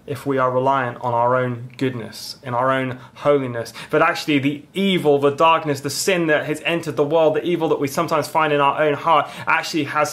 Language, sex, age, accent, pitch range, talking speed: English, male, 20-39, British, 125-155 Hz, 220 wpm